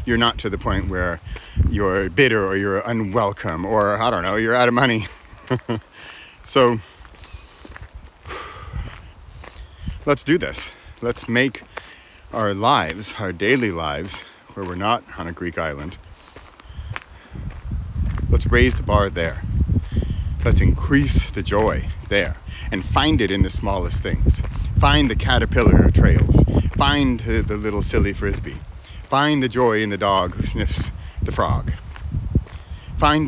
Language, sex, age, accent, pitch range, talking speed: English, male, 40-59, American, 85-115 Hz, 135 wpm